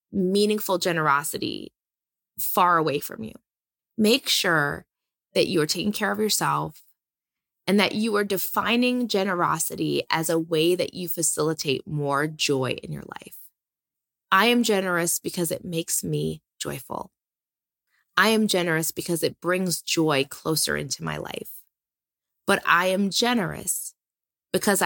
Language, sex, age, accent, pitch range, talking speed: English, female, 20-39, American, 155-200 Hz, 135 wpm